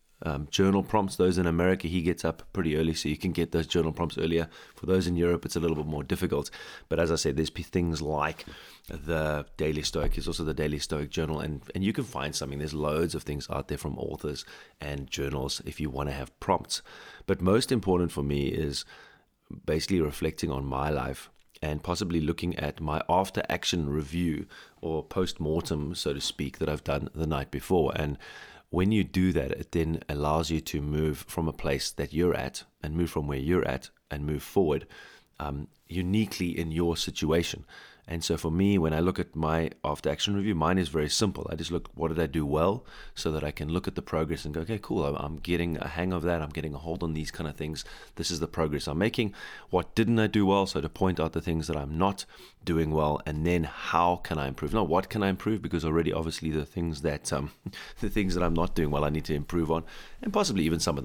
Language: English